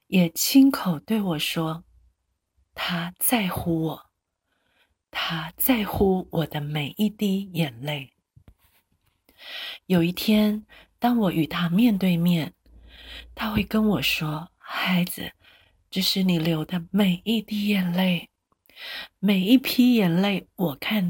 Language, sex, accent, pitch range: Chinese, female, native, 155-205 Hz